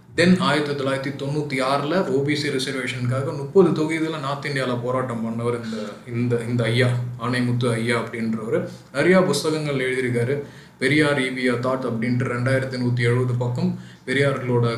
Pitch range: 120-135 Hz